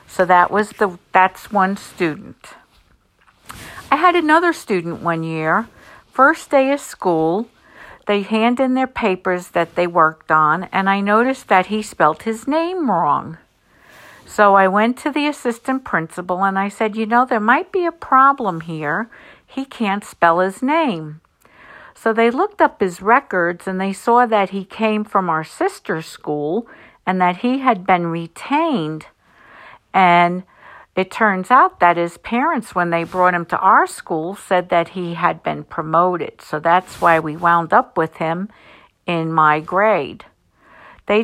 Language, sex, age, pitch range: English, female, 50-69, 175-235 Hz